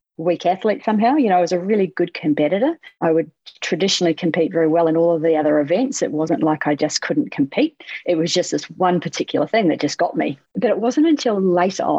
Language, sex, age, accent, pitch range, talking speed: English, female, 40-59, Australian, 165-195 Hz, 230 wpm